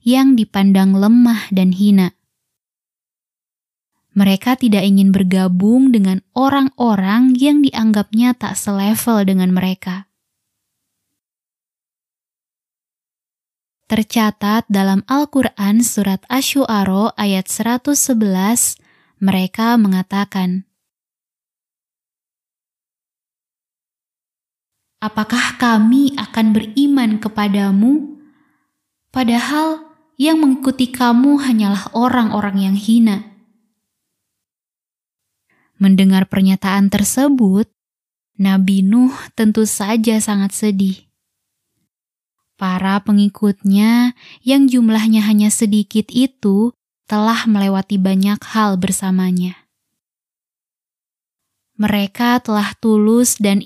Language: Indonesian